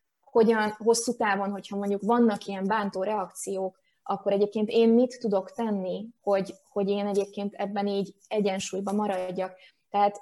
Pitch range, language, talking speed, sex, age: 195-225 Hz, Hungarian, 140 wpm, female, 20-39